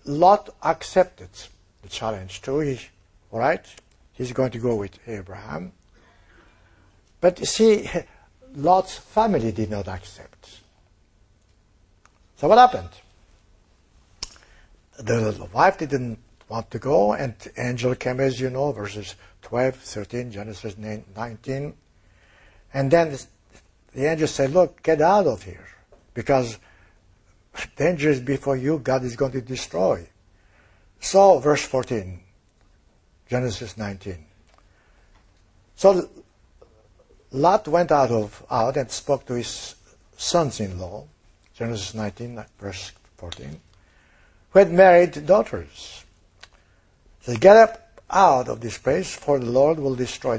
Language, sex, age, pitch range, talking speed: English, male, 60-79, 95-140 Hz, 125 wpm